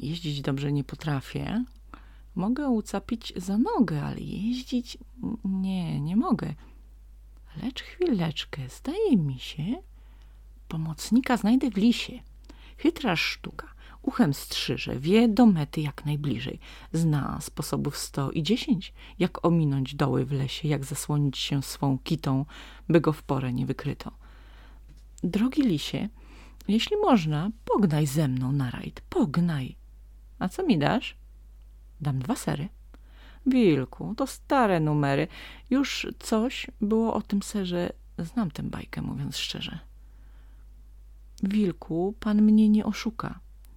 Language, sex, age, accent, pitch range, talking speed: Polish, female, 30-49, native, 145-225 Hz, 120 wpm